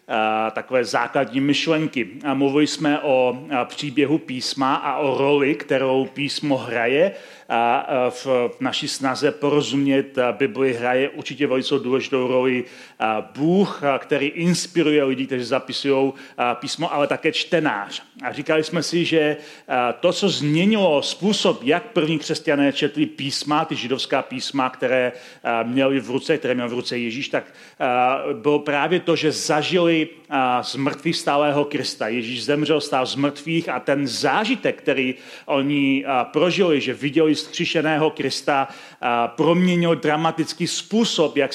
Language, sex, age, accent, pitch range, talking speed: Czech, male, 40-59, native, 130-155 Hz, 130 wpm